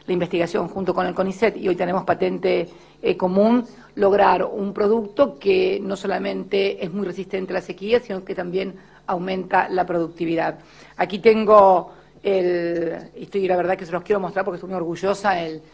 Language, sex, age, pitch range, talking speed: Spanish, female, 40-59, 165-195 Hz, 180 wpm